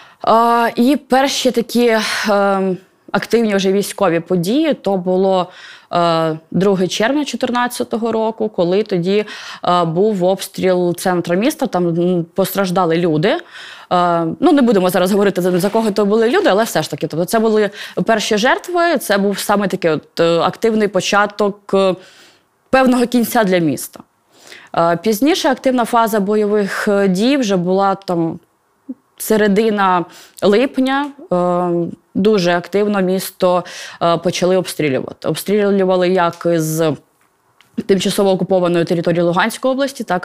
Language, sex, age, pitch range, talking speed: Ukrainian, female, 20-39, 180-225 Hz, 130 wpm